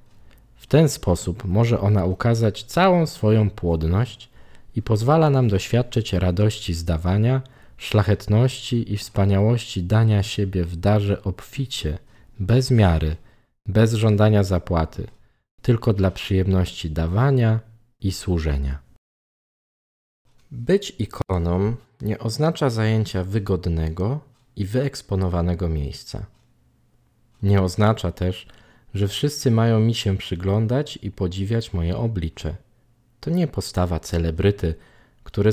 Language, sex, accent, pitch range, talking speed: Polish, male, native, 90-115 Hz, 105 wpm